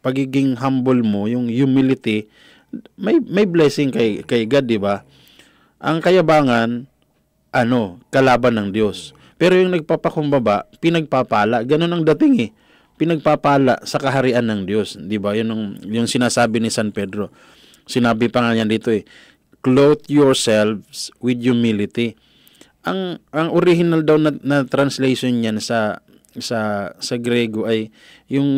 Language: Filipino